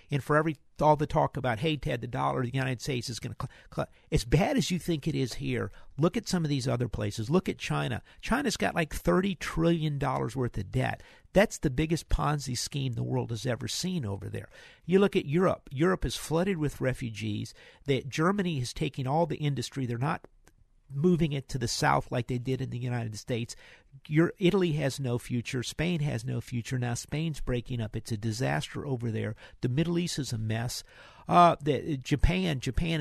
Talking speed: 205 wpm